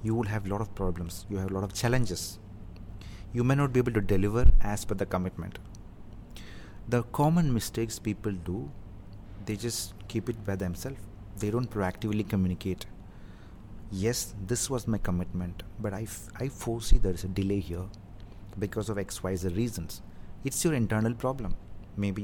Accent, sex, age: Indian, male, 30-49